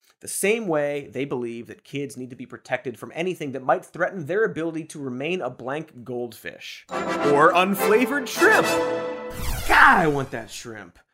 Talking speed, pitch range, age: 165 wpm, 125-185 Hz, 30-49